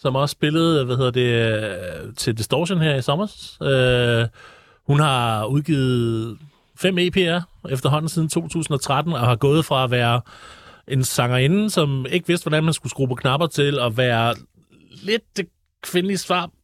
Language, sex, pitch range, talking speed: Danish, male, 125-155 Hz, 160 wpm